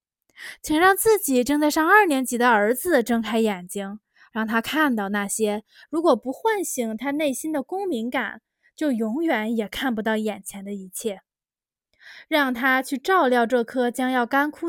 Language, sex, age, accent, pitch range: Chinese, female, 20-39, native, 220-295 Hz